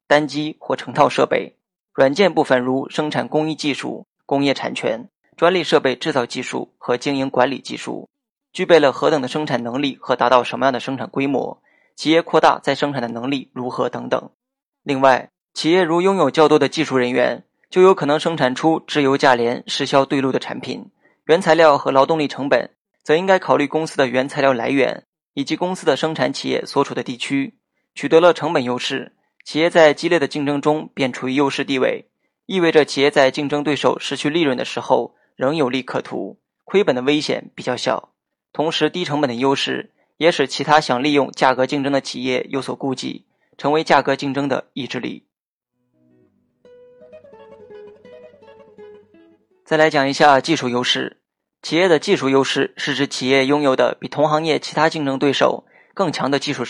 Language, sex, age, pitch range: Chinese, male, 20-39, 130-155 Hz